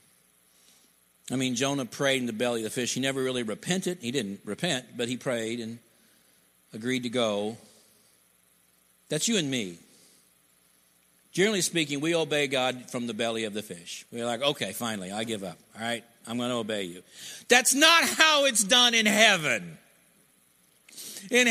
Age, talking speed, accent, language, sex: 50-69, 165 wpm, American, English, male